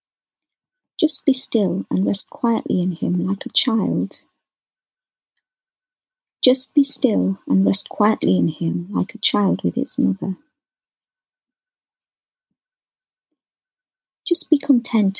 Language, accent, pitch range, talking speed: English, British, 180-285 Hz, 110 wpm